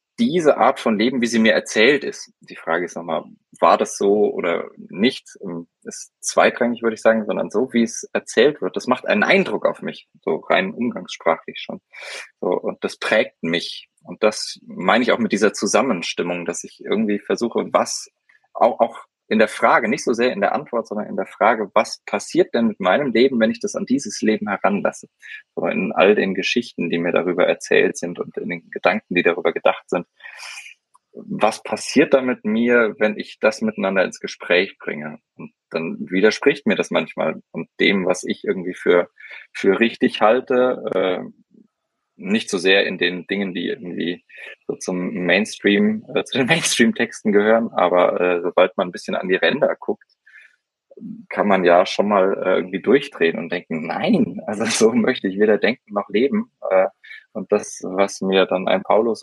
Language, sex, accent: German, male, German